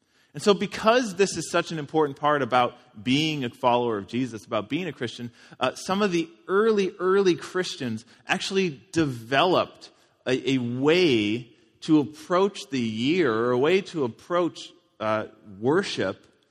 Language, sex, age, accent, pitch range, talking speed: English, male, 30-49, American, 110-145 Hz, 155 wpm